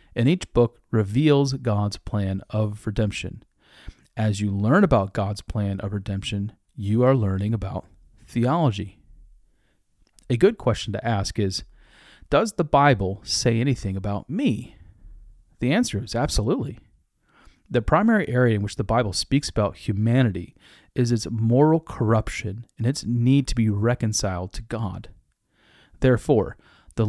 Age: 40-59